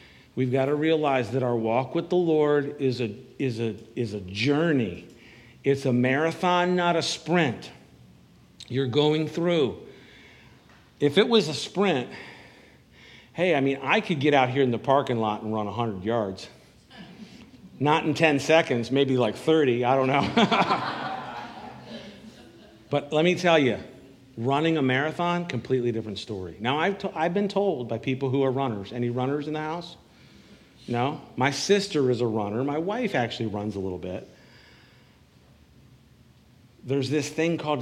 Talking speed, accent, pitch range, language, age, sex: 160 wpm, American, 120-150 Hz, English, 50-69, male